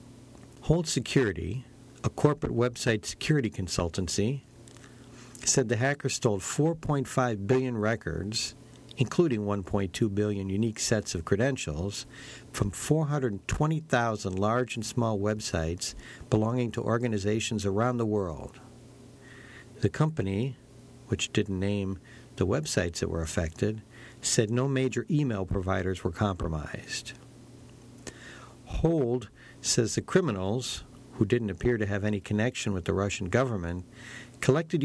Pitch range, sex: 100-130 Hz, male